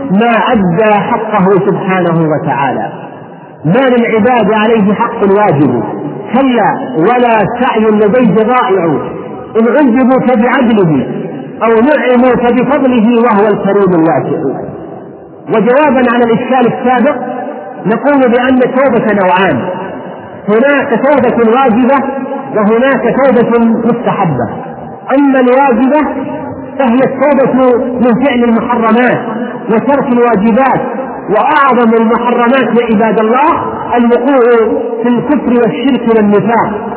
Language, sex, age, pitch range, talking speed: Arabic, male, 40-59, 225-260 Hz, 90 wpm